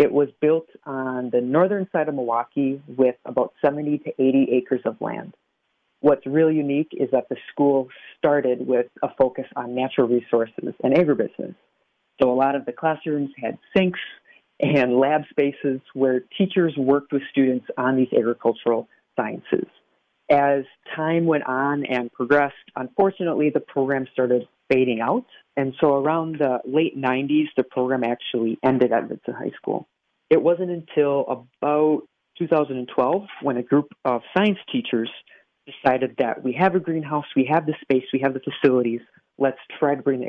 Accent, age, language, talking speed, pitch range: American, 40-59, English, 160 wpm, 125-150 Hz